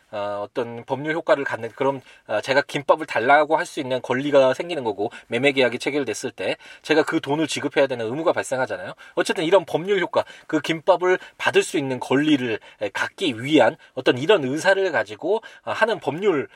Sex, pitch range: male, 115-180 Hz